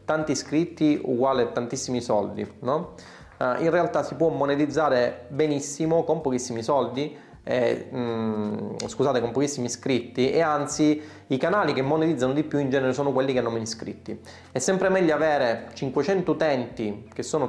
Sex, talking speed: male, 160 wpm